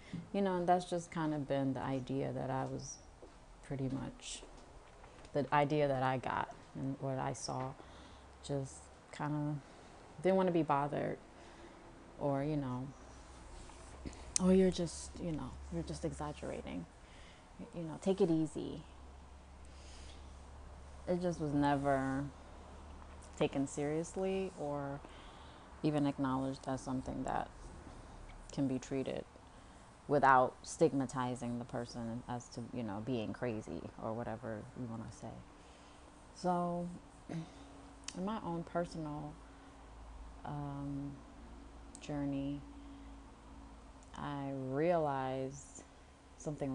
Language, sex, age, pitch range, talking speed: Amharic, female, 30-49, 105-145 Hz, 115 wpm